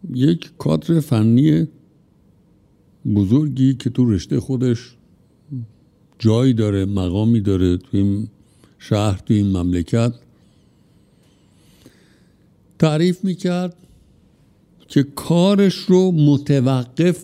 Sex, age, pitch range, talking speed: male, 60-79, 115-165 Hz, 85 wpm